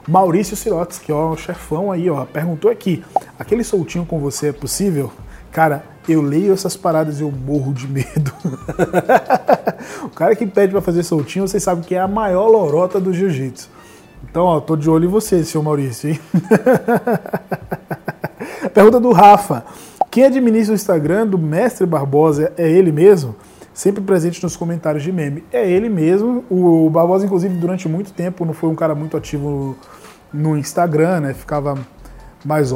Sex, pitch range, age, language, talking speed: male, 150-185 Hz, 20-39, Portuguese, 170 wpm